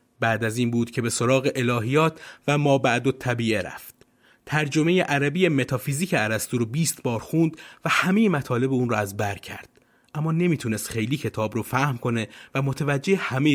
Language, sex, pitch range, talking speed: Persian, male, 120-160 Hz, 175 wpm